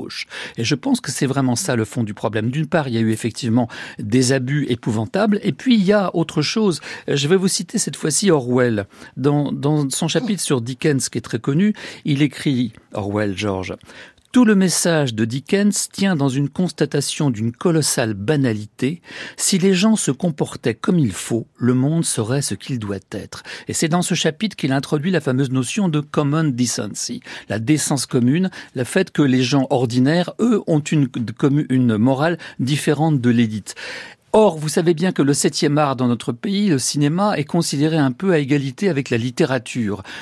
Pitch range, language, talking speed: 120-165 Hz, French, 190 wpm